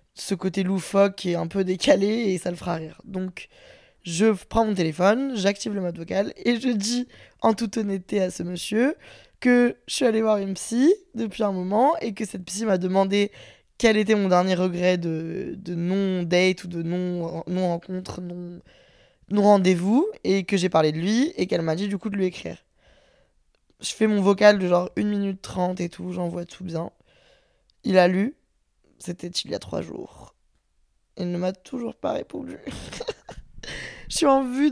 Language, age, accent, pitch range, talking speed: French, 20-39, French, 180-230 Hz, 195 wpm